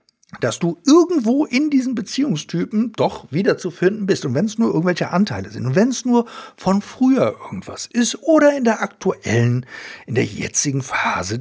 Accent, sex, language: German, male, German